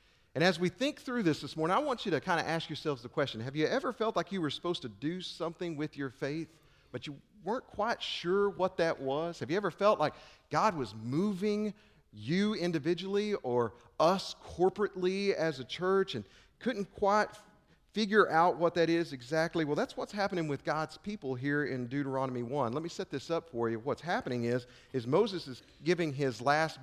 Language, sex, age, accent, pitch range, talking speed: English, male, 40-59, American, 125-180 Hz, 210 wpm